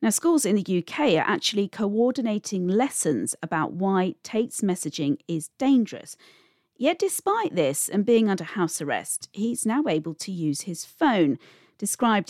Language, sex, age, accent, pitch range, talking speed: English, female, 40-59, British, 160-220 Hz, 150 wpm